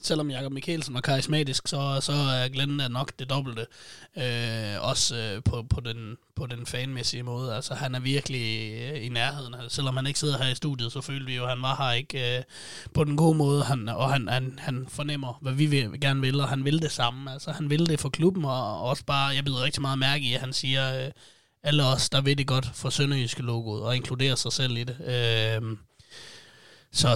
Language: Danish